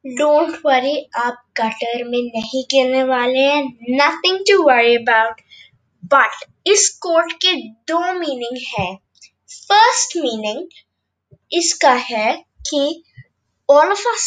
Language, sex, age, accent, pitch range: Hindi, female, 20-39, native, 265-340 Hz